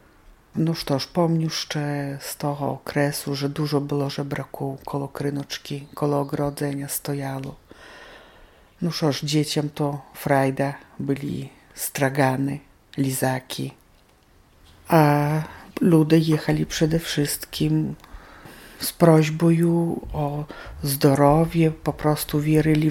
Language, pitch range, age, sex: Polish, 140-155 Hz, 50-69, female